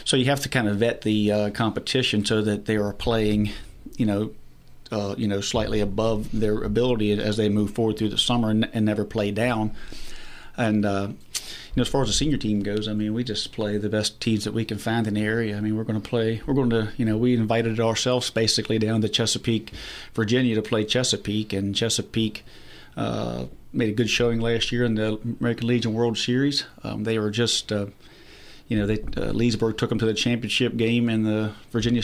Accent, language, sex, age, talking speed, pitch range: American, English, male, 40-59, 220 wpm, 105-115 Hz